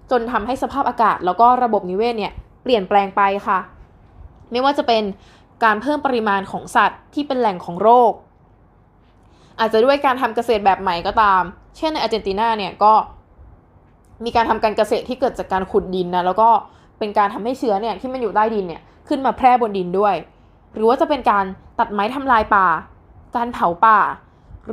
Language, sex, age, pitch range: Thai, female, 20-39, 200-255 Hz